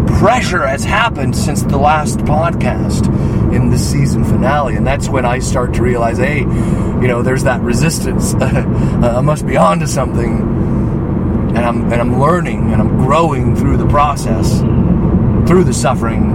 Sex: male